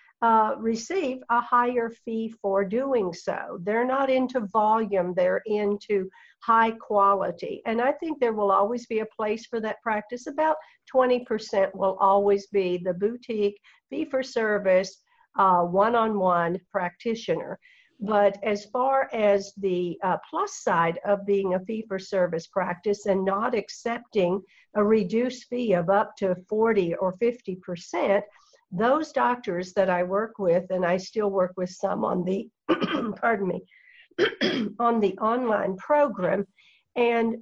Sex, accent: female, American